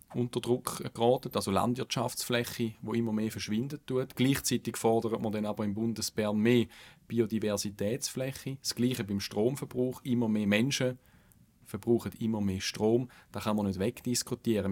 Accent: Austrian